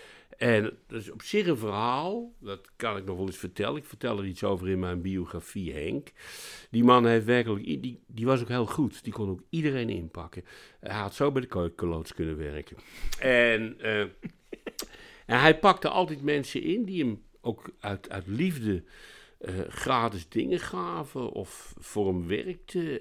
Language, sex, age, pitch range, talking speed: Dutch, male, 60-79, 90-150 Hz, 175 wpm